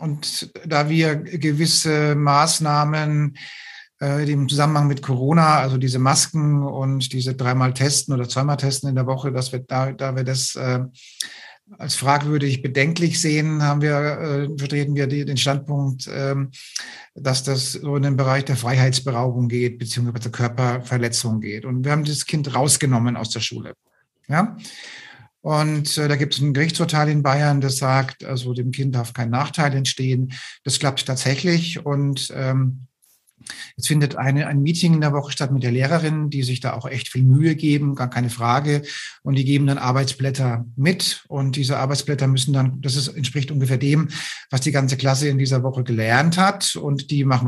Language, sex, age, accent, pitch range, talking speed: German, male, 50-69, German, 130-150 Hz, 175 wpm